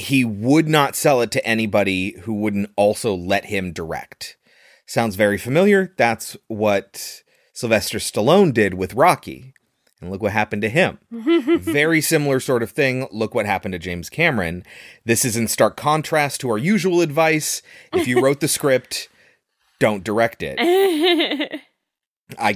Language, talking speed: English, 155 wpm